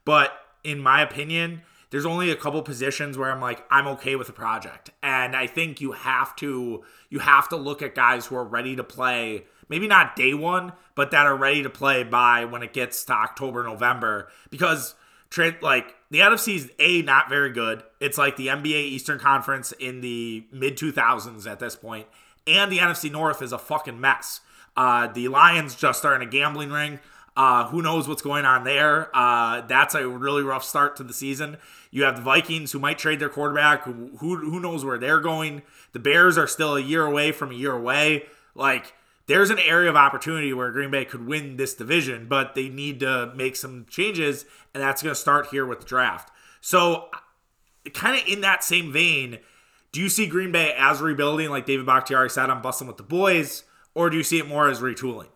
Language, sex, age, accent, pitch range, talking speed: English, male, 20-39, American, 130-155 Hz, 210 wpm